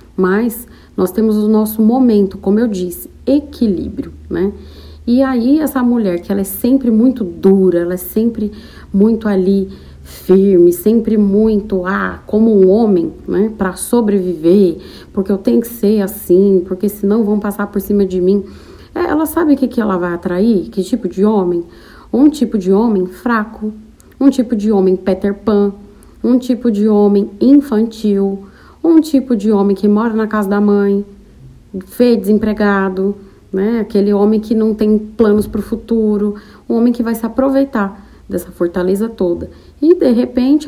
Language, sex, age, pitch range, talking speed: Portuguese, female, 40-59, 195-235 Hz, 165 wpm